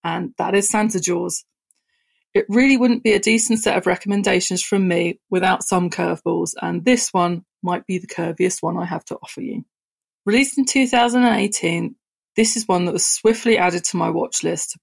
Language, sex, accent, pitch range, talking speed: English, female, British, 180-225 Hz, 185 wpm